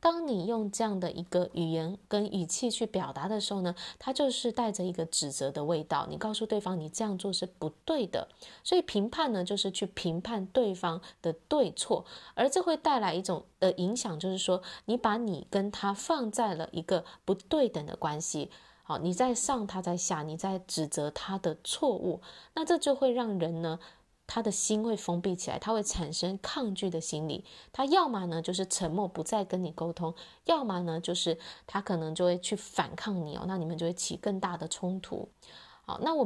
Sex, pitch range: female, 170-225 Hz